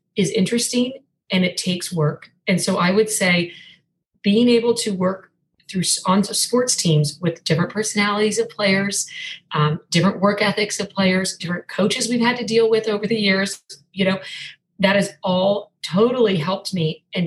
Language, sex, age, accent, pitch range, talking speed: English, female, 40-59, American, 175-225 Hz, 170 wpm